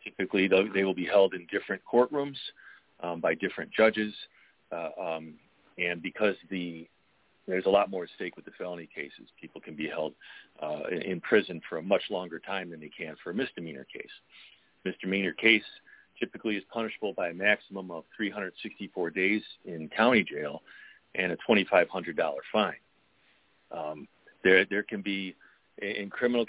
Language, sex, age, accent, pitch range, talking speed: English, male, 40-59, American, 90-110 Hz, 165 wpm